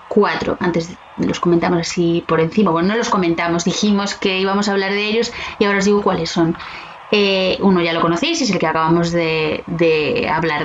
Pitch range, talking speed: 175-220 Hz, 205 wpm